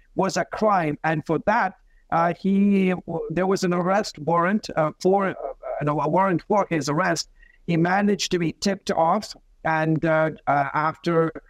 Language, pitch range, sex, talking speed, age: English, 165-195 Hz, male, 165 wpm, 60-79